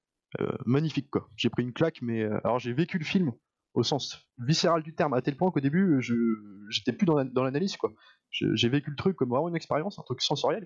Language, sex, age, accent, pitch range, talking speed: French, male, 20-39, French, 120-155 Hz, 235 wpm